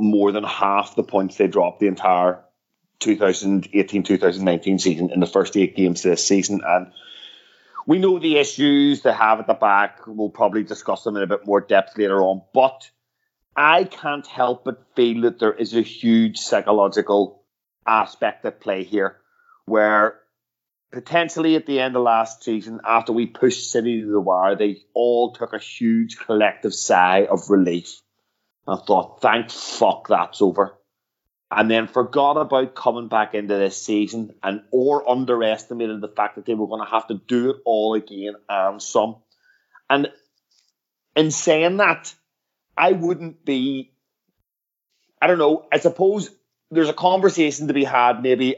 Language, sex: English, male